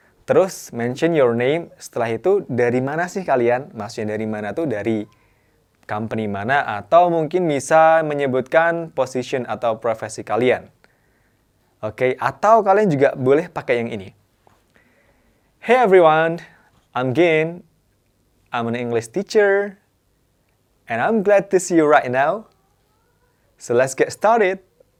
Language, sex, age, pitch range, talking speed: Indonesian, male, 20-39, 110-140 Hz, 130 wpm